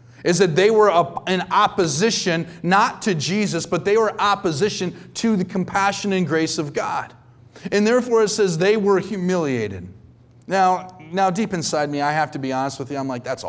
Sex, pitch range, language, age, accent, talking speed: male, 145-190 Hz, English, 30-49, American, 185 wpm